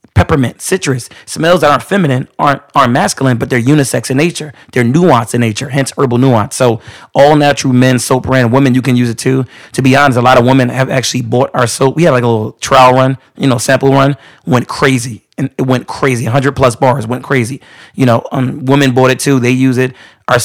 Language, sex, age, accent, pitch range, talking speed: English, male, 30-49, American, 120-135 Hz, 230 wpm